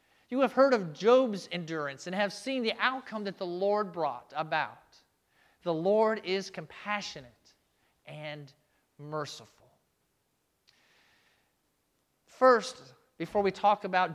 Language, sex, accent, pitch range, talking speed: English, male, American, 185-245 Hz, 115 wpm